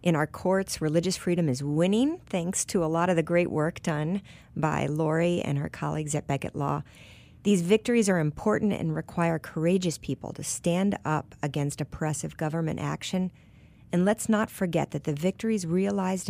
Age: 50-69